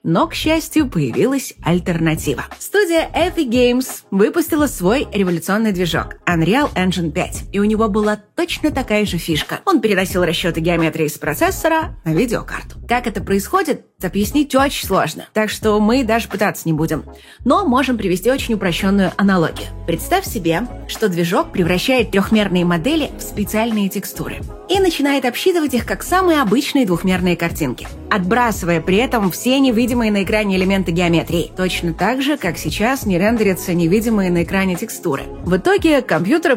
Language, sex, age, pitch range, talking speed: Russian, female, 20-39, 180-245 Hz, 150 wpm